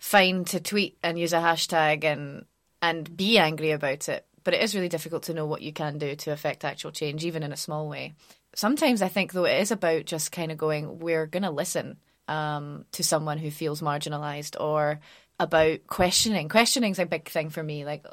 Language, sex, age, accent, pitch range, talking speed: English, female, 20-39, British, 150-175 Hz, 210 wpm